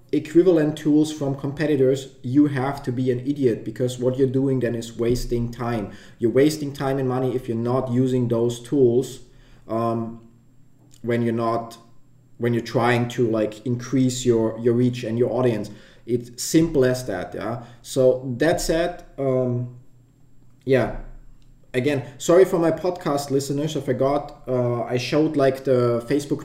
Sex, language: male, English